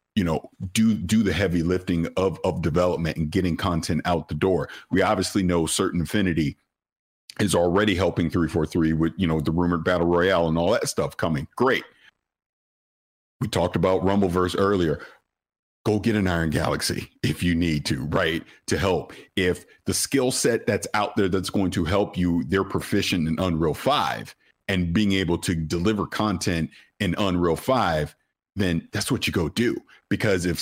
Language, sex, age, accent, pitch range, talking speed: English, male, 50-69, American, 85-110 Hz, 175 wpm